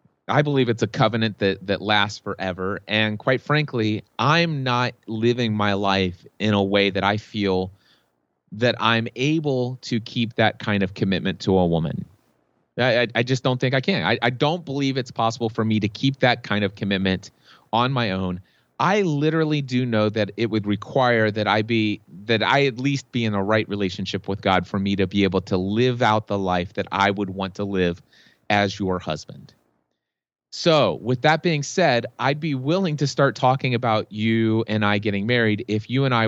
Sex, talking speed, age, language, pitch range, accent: male, 200 wpm, 30-49, English, 100-125 Hz, American